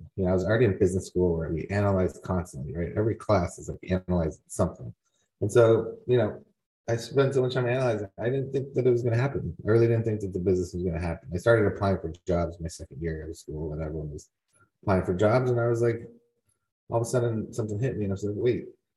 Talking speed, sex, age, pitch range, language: 255 wpm, male, 30-49, 90-115 Hz, English